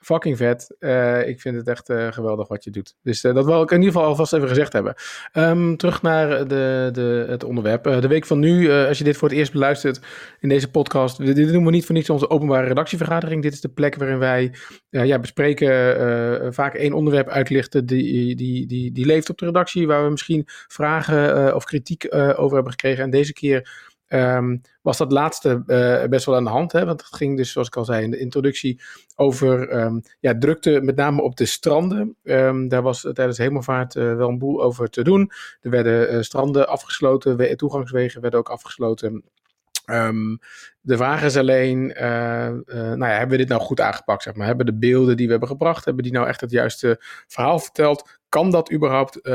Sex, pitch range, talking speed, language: male, 125-150 Hz, 215 wpm, Dutch